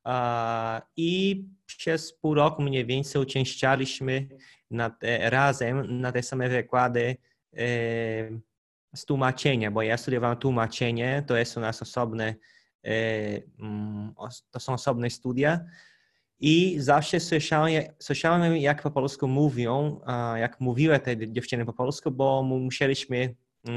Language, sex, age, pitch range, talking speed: Polish, male, 20-39, 120-145 Hz, 105 wpm